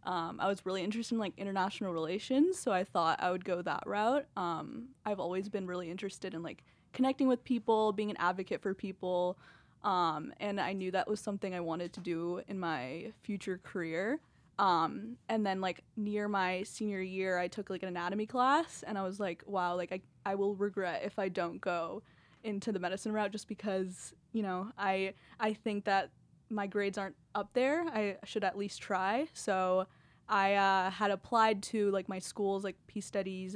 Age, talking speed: 10-29, 195 wpm